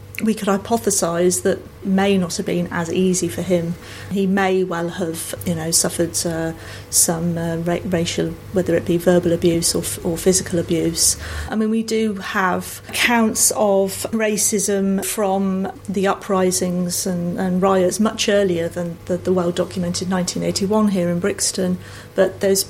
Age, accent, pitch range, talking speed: 40-59, British, 180-200 Hz, 155 wpm